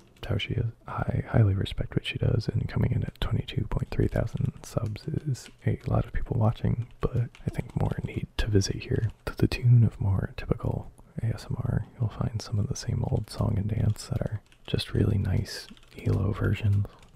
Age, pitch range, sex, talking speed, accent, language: 20-39, 105-125 Hz, male, 190 wpm, American, English